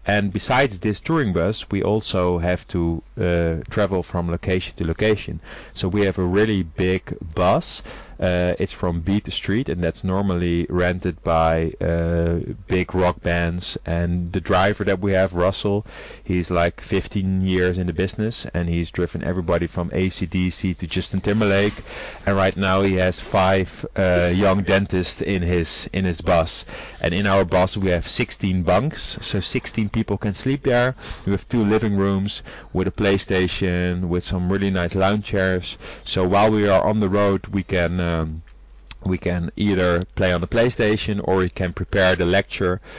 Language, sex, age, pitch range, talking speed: English, male, 30-49, 90-100 Hz, 175 wpm